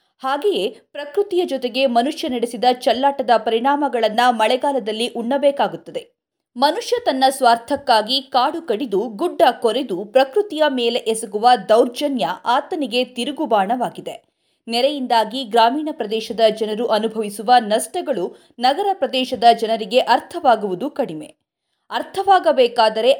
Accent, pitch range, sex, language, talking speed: native, 235-310 Hz, female, Kannada, 90 wpm